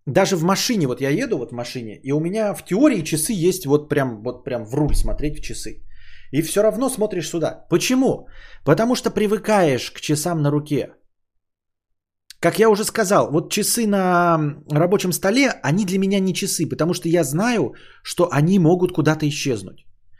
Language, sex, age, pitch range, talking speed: Bulgarian, male, 20-39, 115-195 Hz, 180 wpm